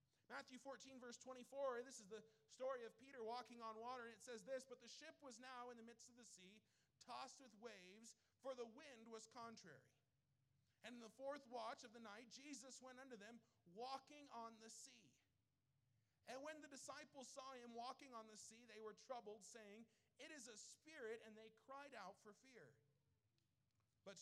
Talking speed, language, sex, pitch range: 190 wpm, English, male, 175-245 Hz